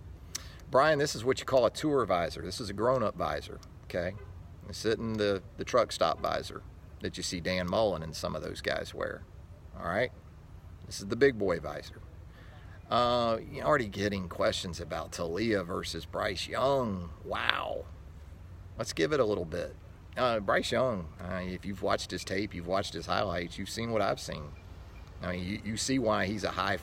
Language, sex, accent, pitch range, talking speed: English, male, American, 90-110 Hz, 185 wpm